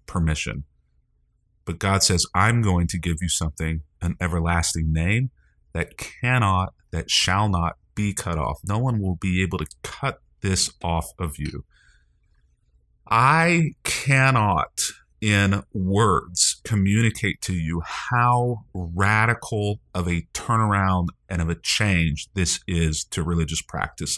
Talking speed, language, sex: 130 wpm, English, male